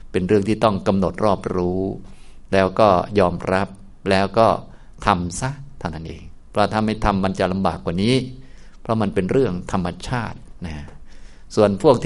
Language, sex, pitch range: Thai, male, 85-110 Hz